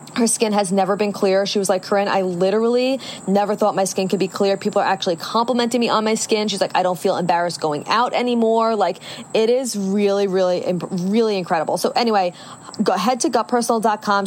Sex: female